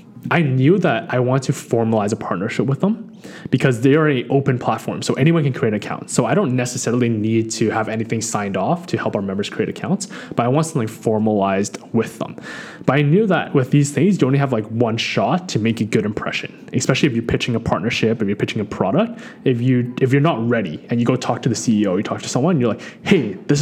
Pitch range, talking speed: 115-155 Hz, 245 wpm